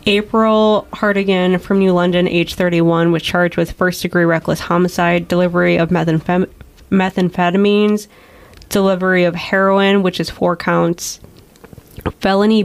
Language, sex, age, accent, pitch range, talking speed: English, female, 10-29, American, 175-195 Hz, 115 wpm